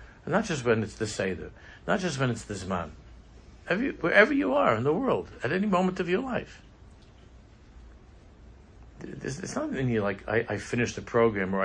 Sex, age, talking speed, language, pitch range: male, 60-79, 195 wpm, English, 95-115 Hz